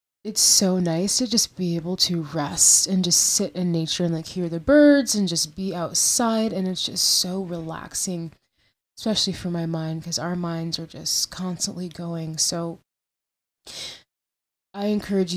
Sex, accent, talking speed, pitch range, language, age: female, American, 165 wpm, 170-190 Hz, English, 20-39